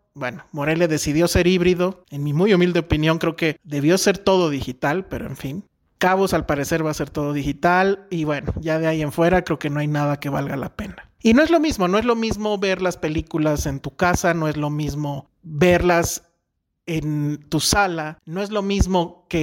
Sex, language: male, Spanish